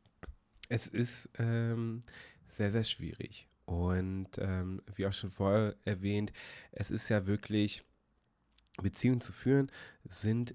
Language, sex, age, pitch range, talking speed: German, male, 30-49, 90-115 Hz, 120 wpm